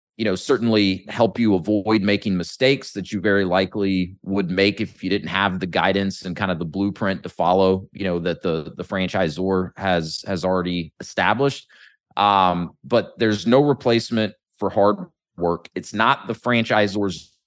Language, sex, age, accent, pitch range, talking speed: English, male, 30-49, American, 95-110 Hz, 170 wpm